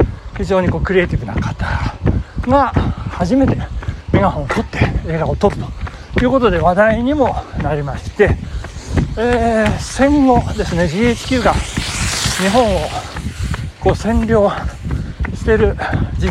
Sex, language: male, Japanese